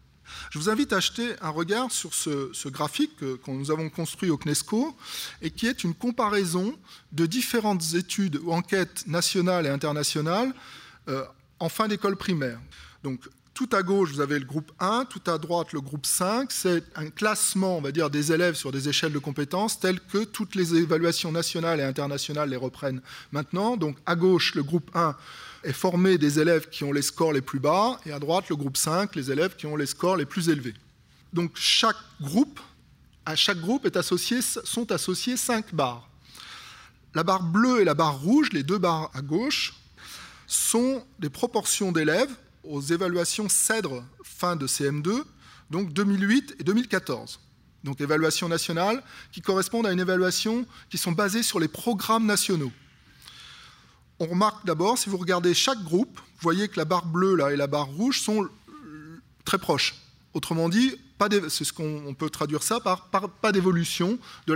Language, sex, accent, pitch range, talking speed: French, male, French, 150-205 Hz, 180 wpm